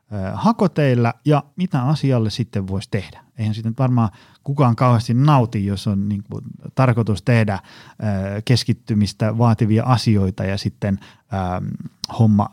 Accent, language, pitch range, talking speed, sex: native, Finnish, 105-130 Hz, 115 wpm, male